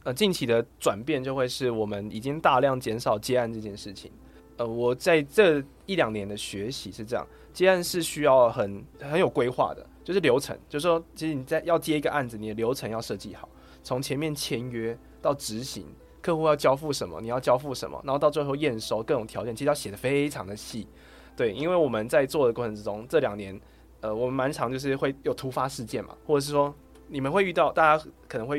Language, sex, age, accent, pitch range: Chinese, male, 20-39, native, 110-145 Hz